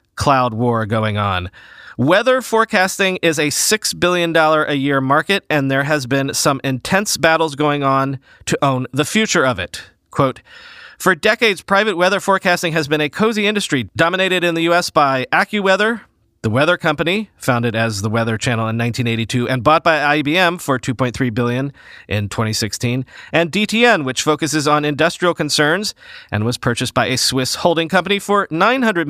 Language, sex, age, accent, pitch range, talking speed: English, male, 30-49, American, 135-180 Hz, 165 wpm